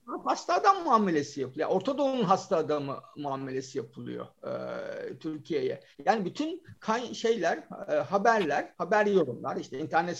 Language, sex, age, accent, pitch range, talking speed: Turkish, male, 50-69, native, 190-300 Hz, 130 wpm